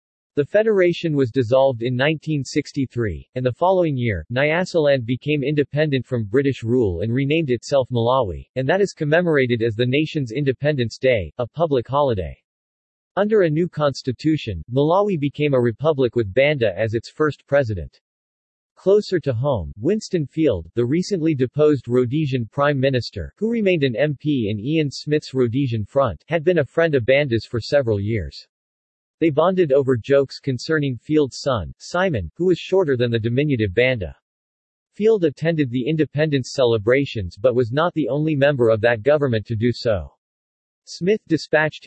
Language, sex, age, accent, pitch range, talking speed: English, male, 40-59, American, 115-150 Hz, 155 wpm